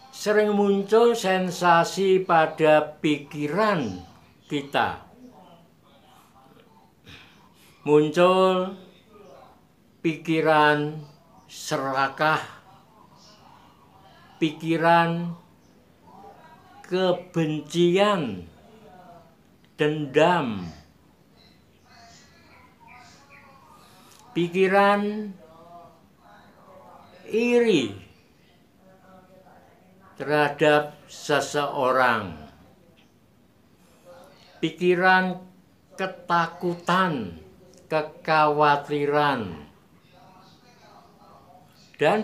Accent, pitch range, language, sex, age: native, 150-185 Hz, Indonesian, male, 60-79